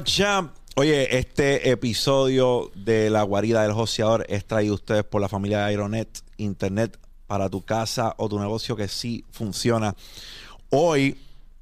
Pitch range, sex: 100-120 Hz, male